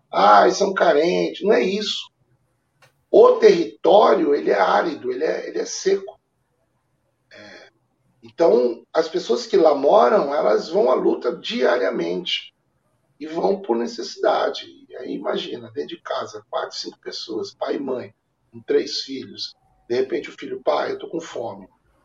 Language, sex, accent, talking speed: Portuguese, male, Brazilian, 145 wpm